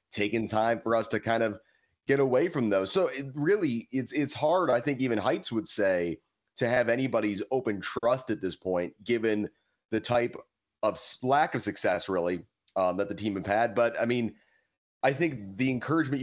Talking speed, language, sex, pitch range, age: 190 wpm, English, male, 105-125 Hz, 30-49